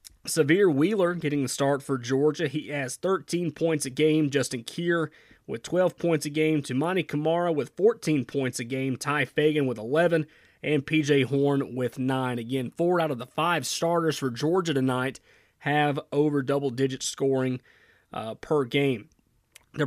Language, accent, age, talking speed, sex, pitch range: English, American, 30-49, 165 wpm, male, 130-155 Hz